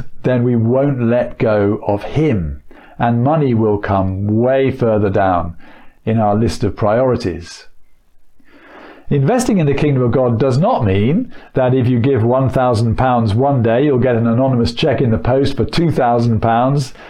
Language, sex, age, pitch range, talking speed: English, male, 50-69, 115-140 Hz, 160 wpm